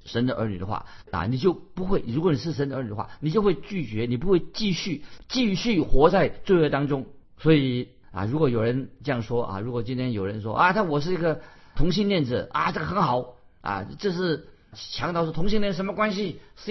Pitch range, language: 115-160 Hz, Chinese